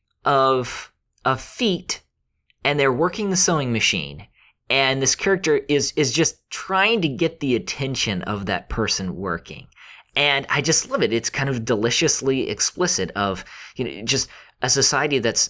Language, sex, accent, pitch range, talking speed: English, male, American, 100-145 Hz, 160 wpm